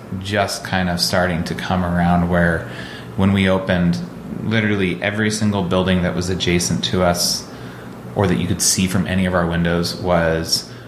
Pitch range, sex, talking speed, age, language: 90-100 Hz, male, 170 wpm, 30-49, English